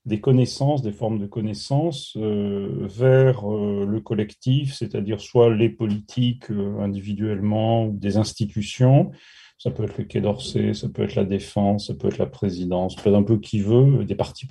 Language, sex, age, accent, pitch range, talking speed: French, male, 40-59, French, 105-130 Hz, 180 wpm